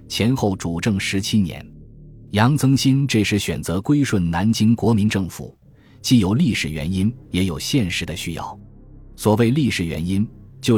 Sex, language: male, Chinese